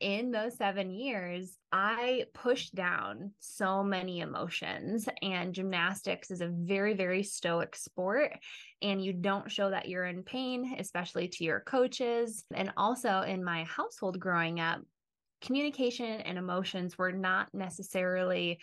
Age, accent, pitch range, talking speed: 20-39, American, 180-215 Hz, 140 wpm